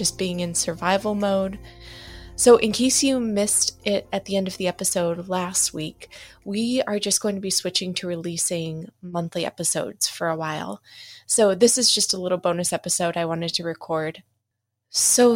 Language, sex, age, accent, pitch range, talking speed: English, female, 20-39, American, 160-205 Hz, 180 wpm